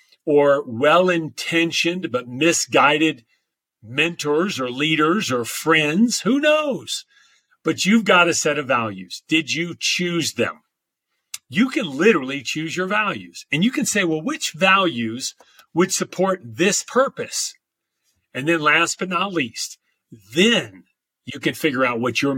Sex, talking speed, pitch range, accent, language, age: male, 140 wpm, 130-185 Hz, American, English, 40-59